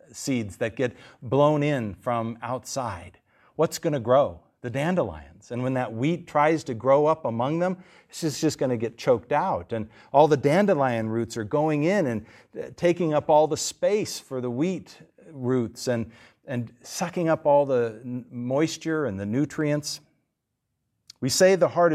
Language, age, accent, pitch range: English, 50-69, American, 125-160 Hz